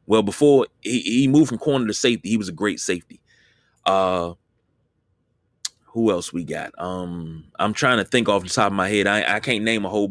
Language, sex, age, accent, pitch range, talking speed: English, male, 30-49, American, 100-125 Hz, 215 wpm